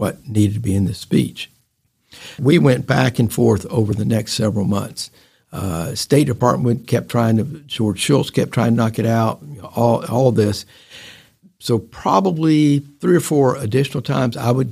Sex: male